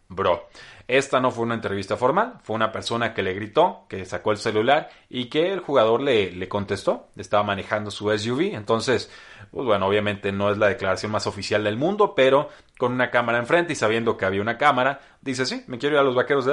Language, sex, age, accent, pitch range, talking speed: Spanish, male, 30-49, Mexican, 100-125 Hz, 220 wpm